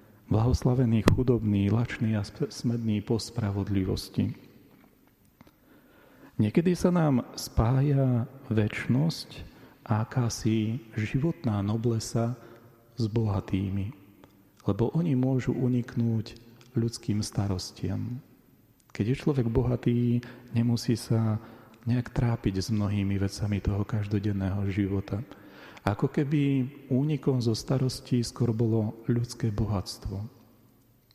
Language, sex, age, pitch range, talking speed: Slovak, male, 40-59, 105-125 Hz, 90 wpm